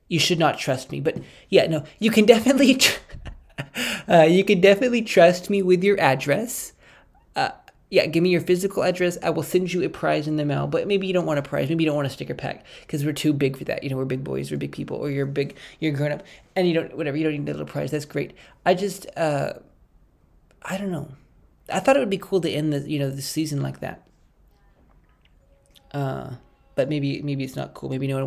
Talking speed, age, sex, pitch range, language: 240 wpm, 20-39, male, 140-180 Hz, English